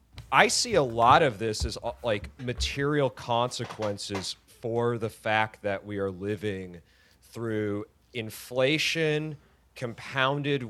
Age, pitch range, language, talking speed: 30-49, 110-145 Hz, English, 110 wpm